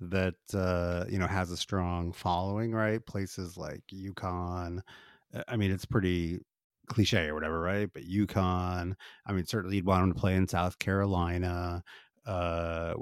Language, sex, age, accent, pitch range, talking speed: English, male, 30-49, American, 90-105 Hz, 155 wpm